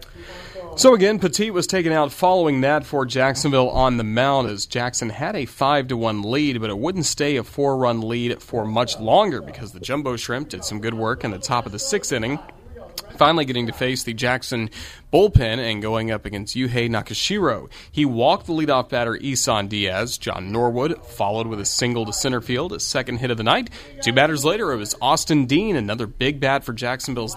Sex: male